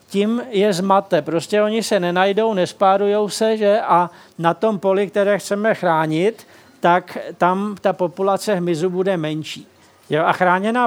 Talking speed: 150 wpm